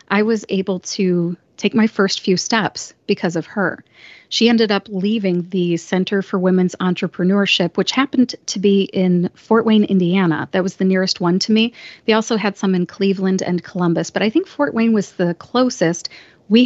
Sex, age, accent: female, 40-59, American